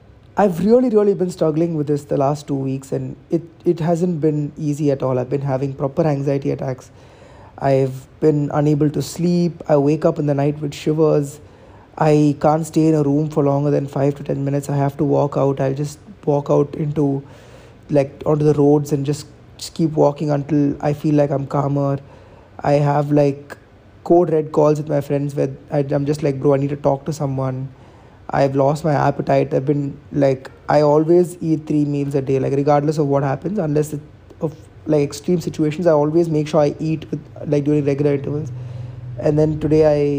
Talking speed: 205 wpm